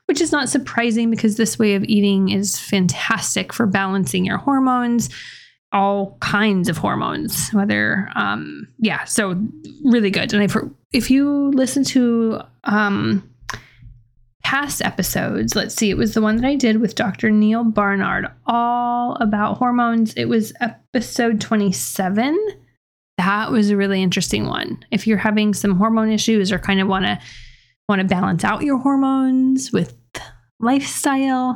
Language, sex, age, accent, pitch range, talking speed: English, female, 20-39, American, 195-240 Hz, 150 wpm